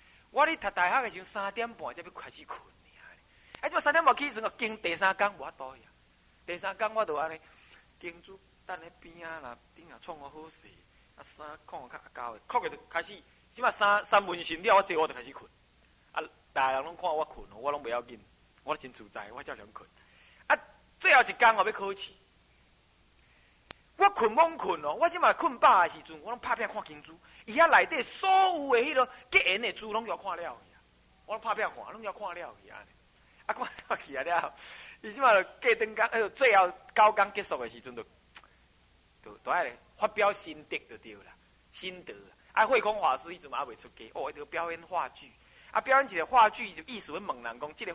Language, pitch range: Chinese, 155-235 Hz